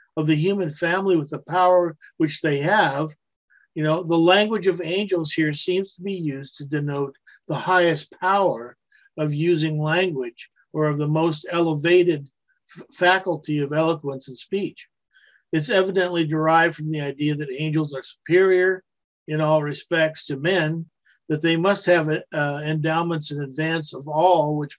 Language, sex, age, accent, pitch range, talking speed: English, male, 50-69, American, 150-180 Hz, 160 wpm